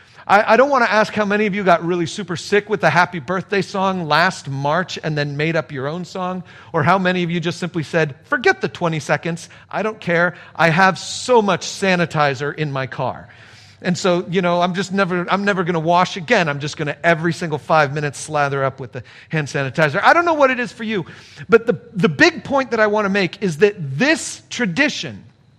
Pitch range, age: 150-215 Hz, 40-59